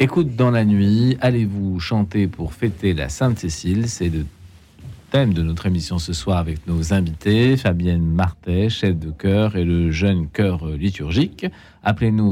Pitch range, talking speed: 85-100 Hz, 160 wpm